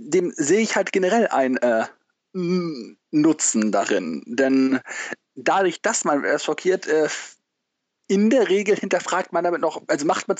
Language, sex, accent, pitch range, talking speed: German, male, German, 145-215 Hz, 150 wpm